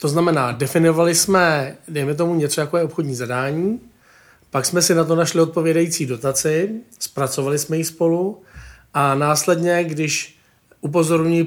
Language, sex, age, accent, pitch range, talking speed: Czech, male, 40-59, native, 135-165 Hz, 140 wpm